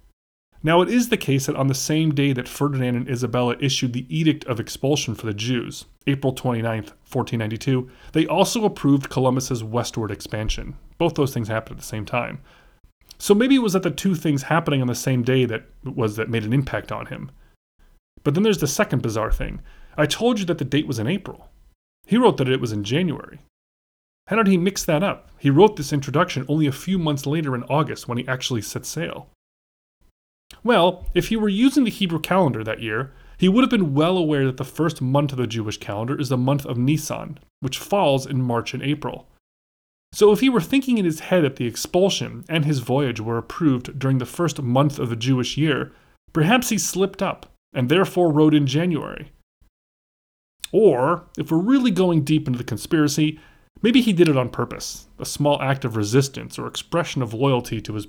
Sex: male